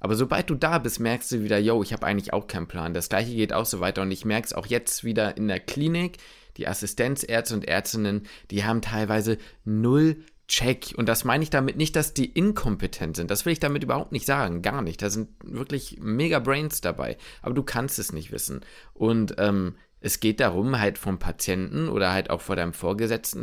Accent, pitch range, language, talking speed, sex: German, 105-135 Hz, German, 215 wpm, male